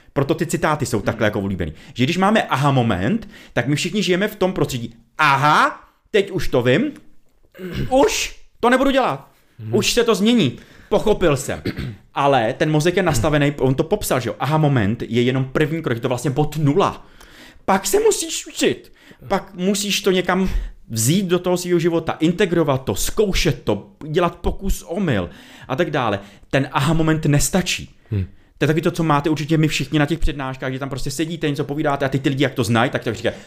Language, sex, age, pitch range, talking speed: Czech, male, 30-49, 130-180 Hz, 190 wpm